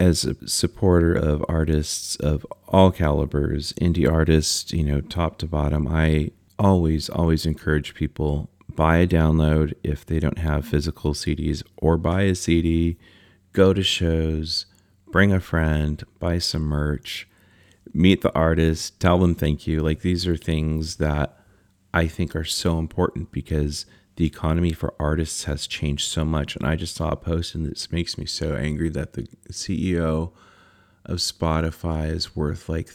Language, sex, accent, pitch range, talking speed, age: English, male, American, 75-90 Hz, 160 wpm, 30-49